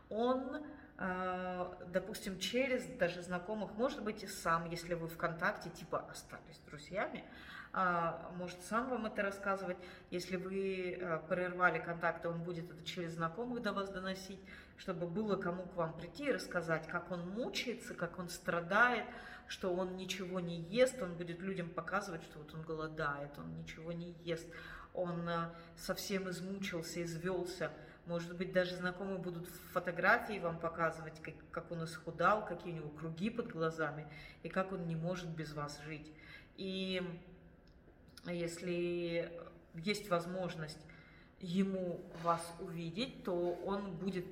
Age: 30-49